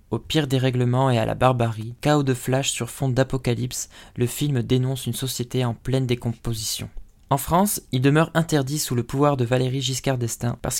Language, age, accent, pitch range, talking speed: French, 20-39, French, 125-145 Hz, 190 wpm